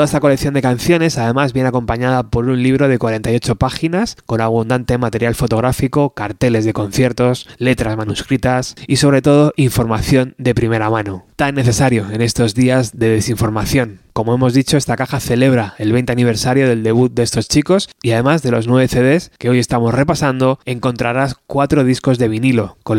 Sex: male